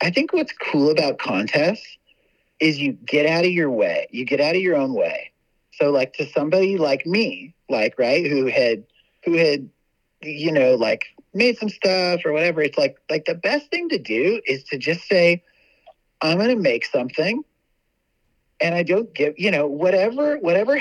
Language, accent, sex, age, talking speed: English, American, male, 30-49, 185 wpm